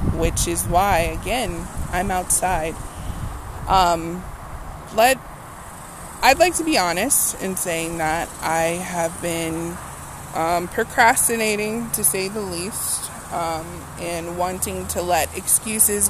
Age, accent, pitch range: 20-39, American, 165-200 Hz